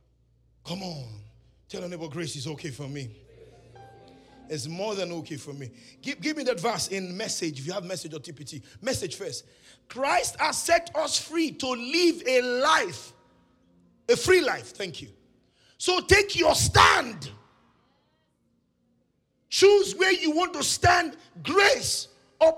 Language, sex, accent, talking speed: English, male, Nigerian, 150 wpm